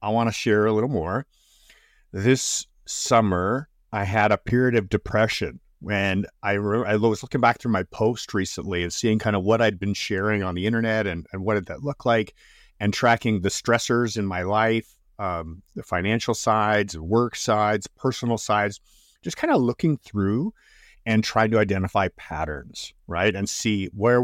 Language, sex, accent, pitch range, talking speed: English, male, American, 95-115 Hz, 180 wpm